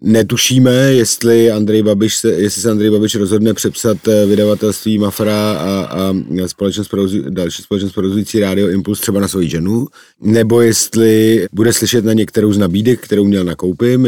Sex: male